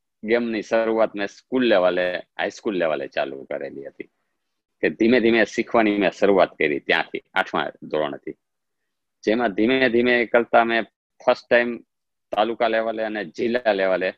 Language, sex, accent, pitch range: Gujarati, male, native, 95-115 Hz